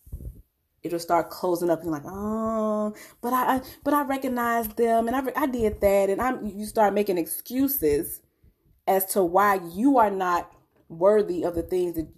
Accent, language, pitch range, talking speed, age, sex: American, English, 170-225 Hz, 175 wpm, 20-39, female